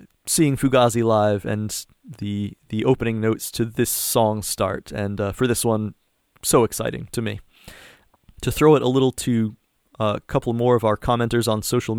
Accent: American